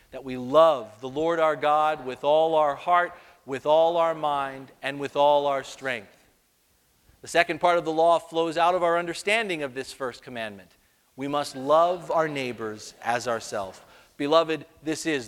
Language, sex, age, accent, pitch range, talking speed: English, male, 40-59, American, 145-200 Hz, 175 wpm